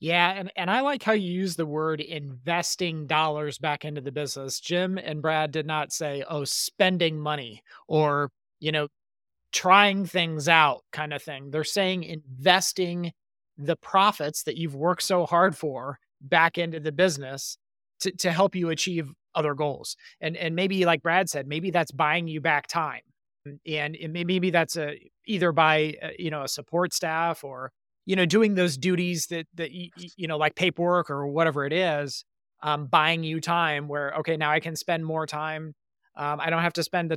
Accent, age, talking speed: American, 30-49, 190 wpm